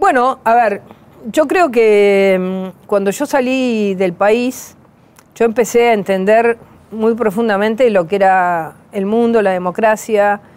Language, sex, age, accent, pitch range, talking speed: Spanish, female, 40-59, Argentinian, 195-240 Hz, 135 wpm